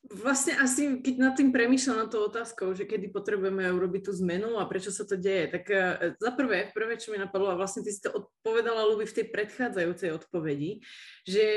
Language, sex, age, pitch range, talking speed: Slovak, female, 20-39, 175-215 Hz, 205 wpm